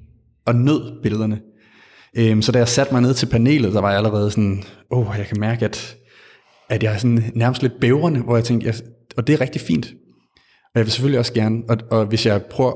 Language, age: Danish, 30-49